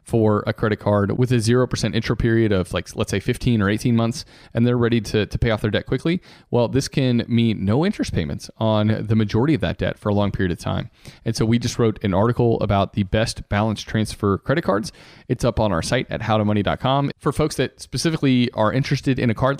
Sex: male